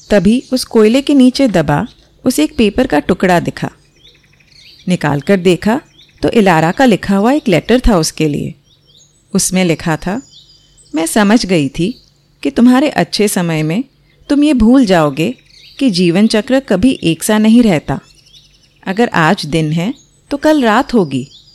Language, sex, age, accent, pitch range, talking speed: Hindi, female, 30-49, native, 150-235 Hz, 155 wpm